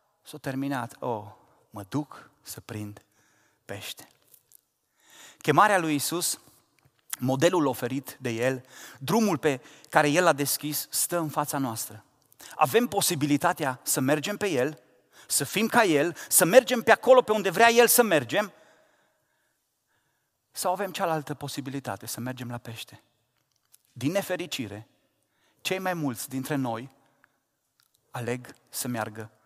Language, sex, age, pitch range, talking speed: Romanian, male, 30-49, 135-170 Hz, 130 wpm